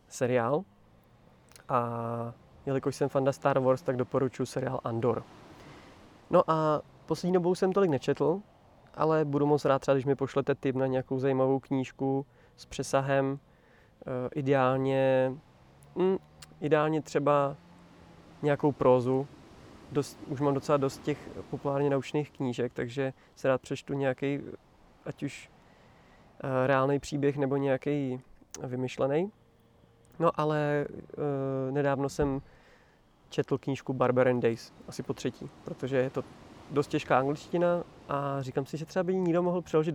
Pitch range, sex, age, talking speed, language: 125-145 Hz, male, 20-39, 130 wpm, Czech